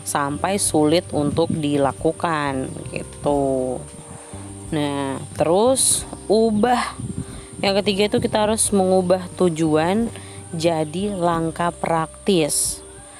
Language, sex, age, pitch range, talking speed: Malay, female, 20-39, 145-185 Hz, 80 wpm